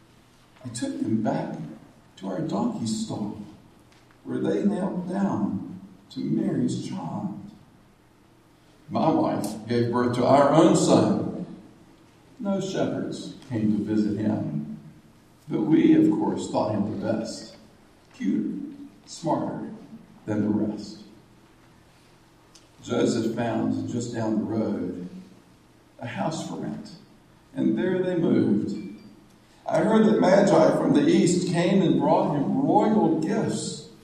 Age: 50-69